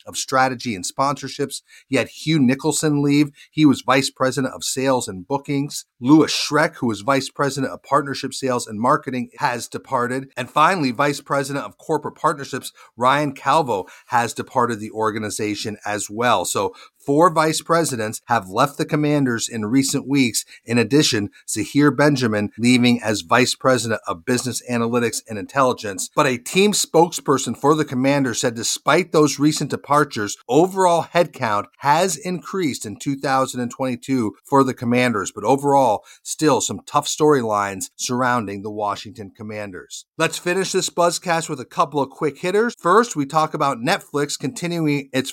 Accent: American